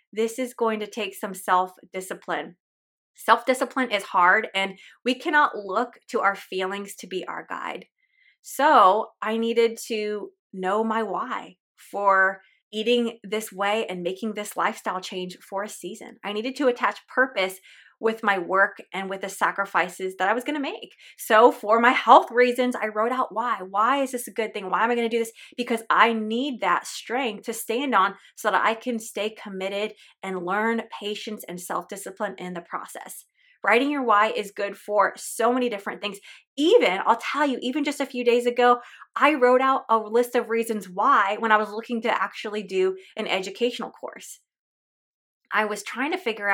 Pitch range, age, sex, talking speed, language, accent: 200-245 Hz, 20-39, female, 185 wpm, English, American